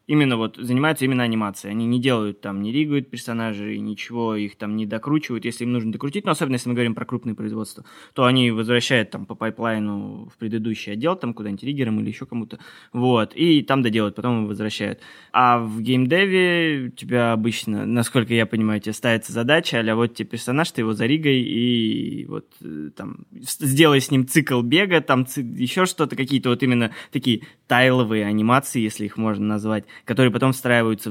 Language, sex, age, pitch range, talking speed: Russian, male, 20-39, 110-130 Hz, 185 wpm